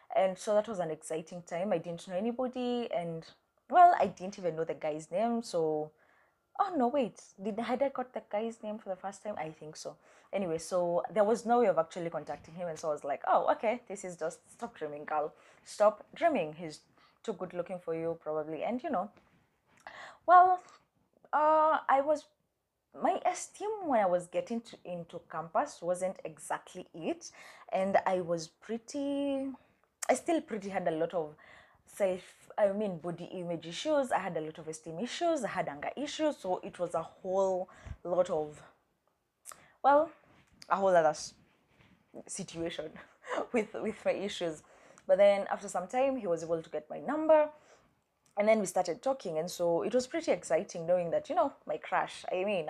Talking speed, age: 185 wpm, 20-39